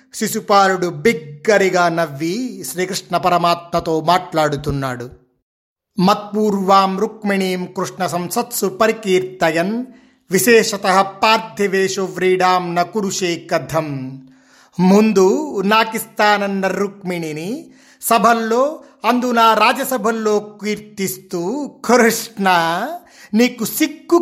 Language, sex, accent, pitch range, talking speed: Telugu, male, native, 185-235 Hz, 50 wpm